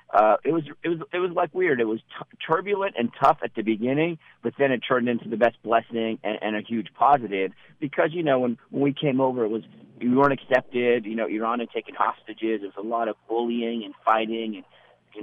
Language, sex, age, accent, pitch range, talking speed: English, male, 50-69, American, 105-120 Hz, 235 wpm